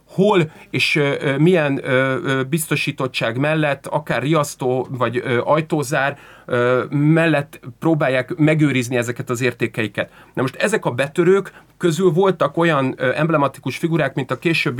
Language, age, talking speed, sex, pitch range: Hungarian, 30-49, 115 wpm, male, 130-170 Hz